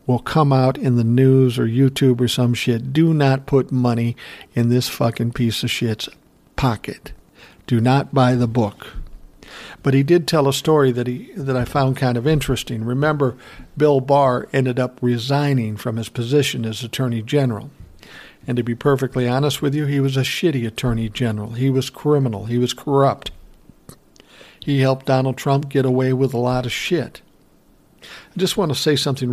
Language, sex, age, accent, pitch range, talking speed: English, male, 60-79, American, 125-150 Hz, 180 wpm